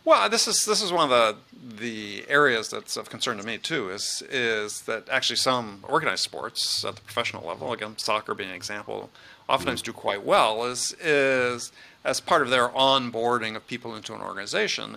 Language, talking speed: English, 190 wpm